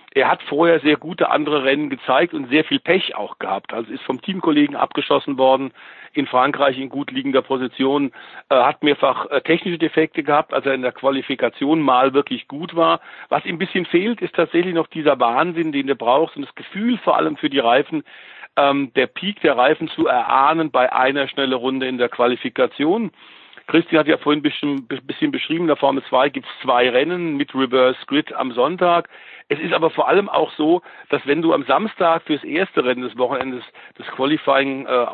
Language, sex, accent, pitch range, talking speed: German, male, German, 135-170 Hz, 200 wpm